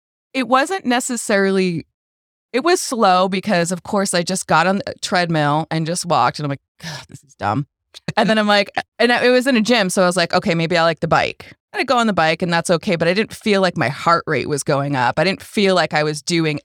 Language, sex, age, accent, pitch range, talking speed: English, female, 20-39, American, 155-205 Hz, 255 wpm